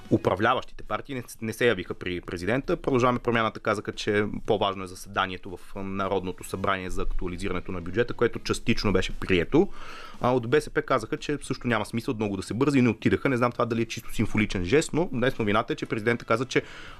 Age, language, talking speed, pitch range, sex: 30-49, Bulgarian, 190 wpm, 105-140 Hz, male